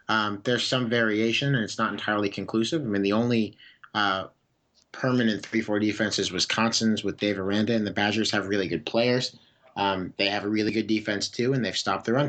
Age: 30-49